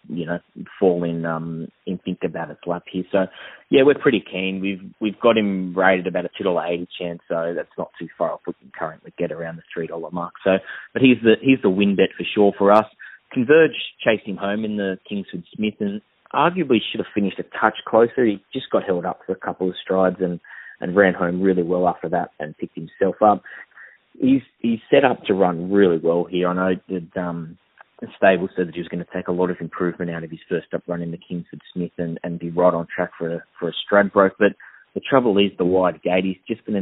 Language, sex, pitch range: English, male, 85-100 Hz